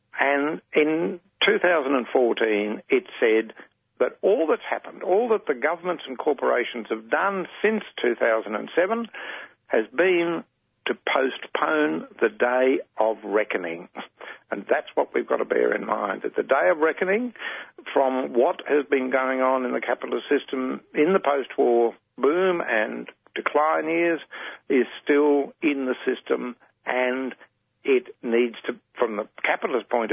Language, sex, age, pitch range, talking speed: English, male, 60-79, 125-185 Hz, 140 wpm